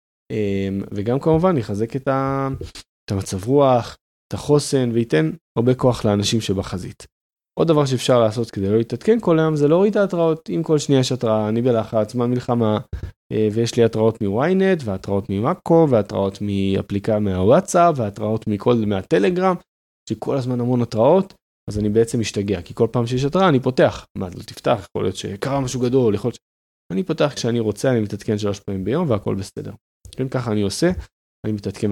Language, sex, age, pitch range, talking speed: Hebrew, male, 20-39, 105-140 Hz, 165 wpm